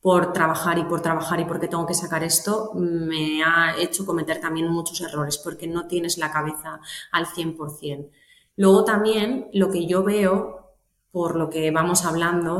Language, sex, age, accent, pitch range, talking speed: Spanish, female, 20-39, Spanish, 160-195 Hz, 170 wpm